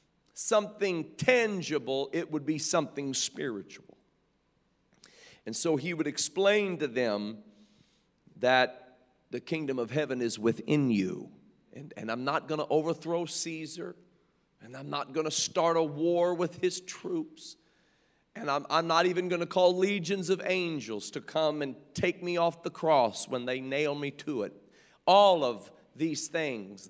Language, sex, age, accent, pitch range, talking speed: English, male, 40-59, American, 130-180 Hz, 155 wpm